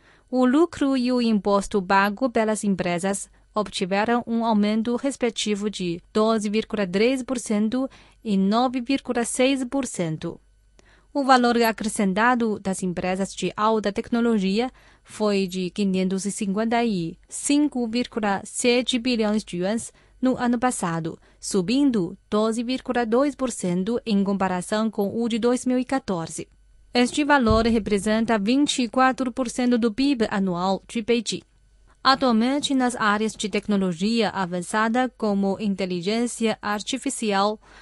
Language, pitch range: Chinese, 200-250 Hz